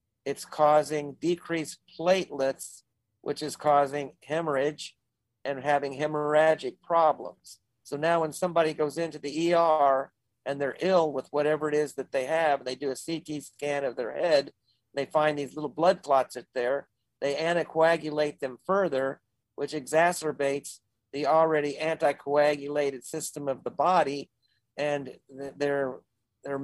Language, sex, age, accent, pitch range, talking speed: English, male, 50-69, American, 135-160 Hz, 140 wpm